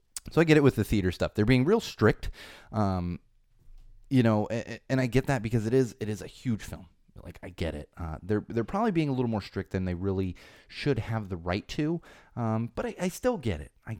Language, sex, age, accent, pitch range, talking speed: English, male, 30-49, American, 95-120 Hz, 240 wpm